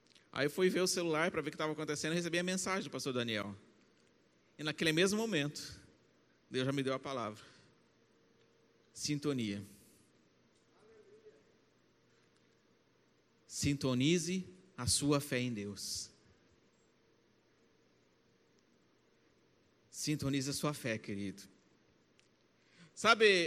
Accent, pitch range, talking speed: Brazilian, 140-220 Hz, 105 wpm